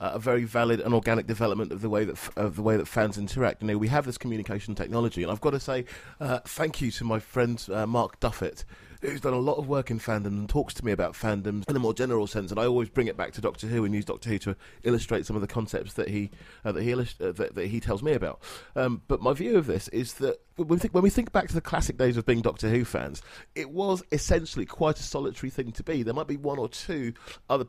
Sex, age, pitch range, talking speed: male, 30-49, 105-130 Hz, 280 wpm